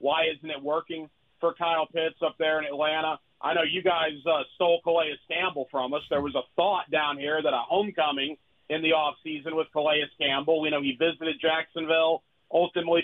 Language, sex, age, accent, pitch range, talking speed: English, male, 40-59, American, 150-185 Hz, 195 wpm